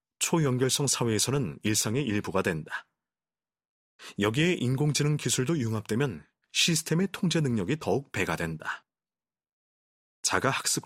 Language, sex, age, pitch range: Korean, male, 30-49, 105-145 Hz